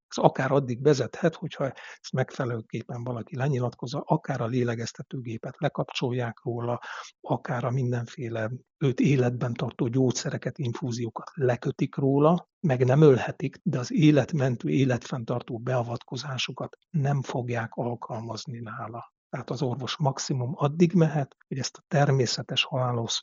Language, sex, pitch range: Hungarian, male, 120-150 Hz